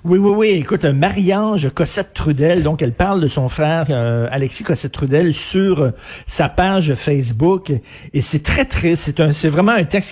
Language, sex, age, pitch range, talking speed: French, male, 50-69, 145-185 Hz, 200 wpm